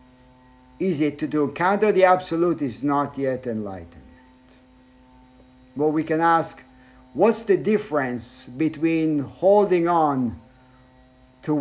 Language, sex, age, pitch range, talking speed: English, male, 50-69, 130-165 Hz, 115 wpm